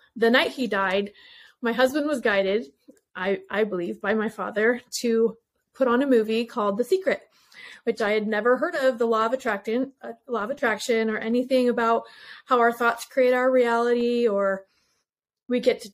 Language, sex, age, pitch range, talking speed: English, female, 30-49, 220-255 Hz, 175 wpm